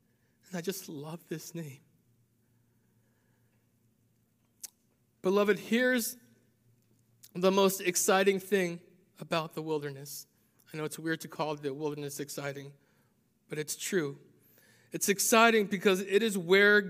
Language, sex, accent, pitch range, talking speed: English, male, American, 135-190 Hz, 115 wpm